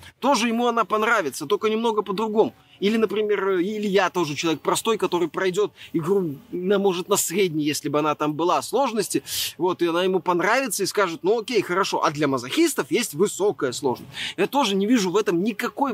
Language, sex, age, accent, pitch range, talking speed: Russian, male, 20-39, native, 175-230 Hz, 185 wpm